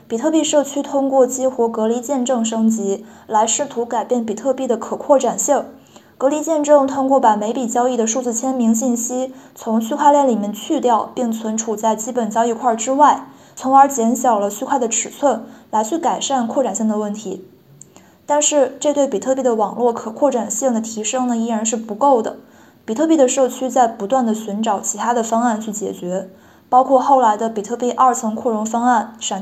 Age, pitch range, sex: 20-39, 220-265 Hz, female